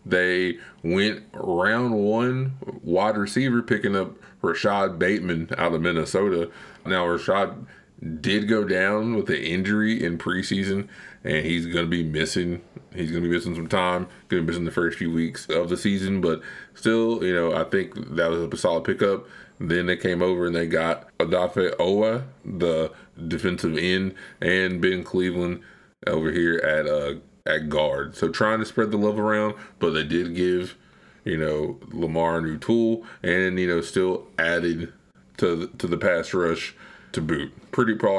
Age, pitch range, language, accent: 20-39, 85-105 Hz, English, American